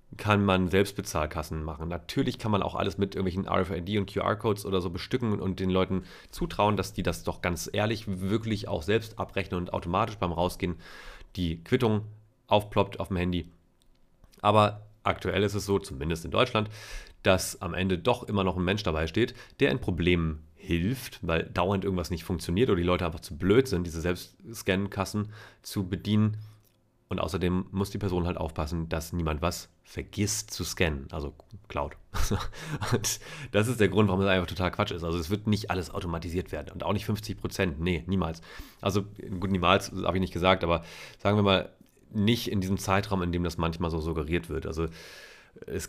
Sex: male